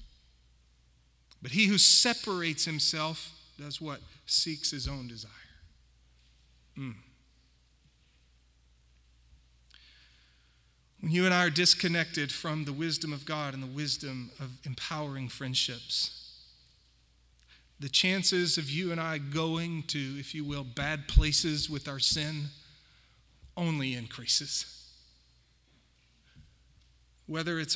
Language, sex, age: English, male, 40-59